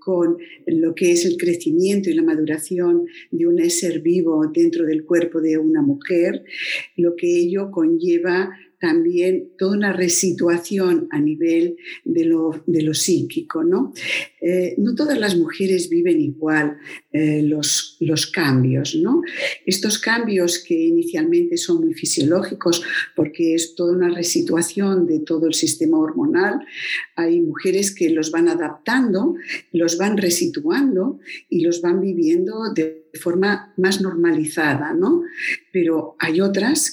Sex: female